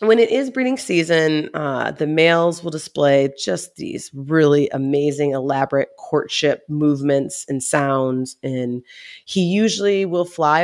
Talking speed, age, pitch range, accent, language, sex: 135 wpm, 30-49, 145-175 Hz, American, English, female